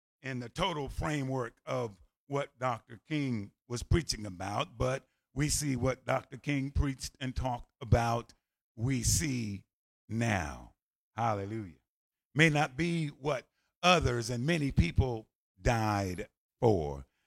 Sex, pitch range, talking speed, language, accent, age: male, 110-140 Hz, 120 wpm, English, American, 50-69